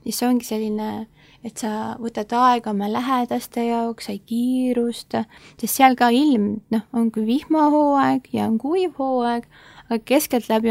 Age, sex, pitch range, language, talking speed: 20-39, female, 215-250 Hz, English, 155 wpm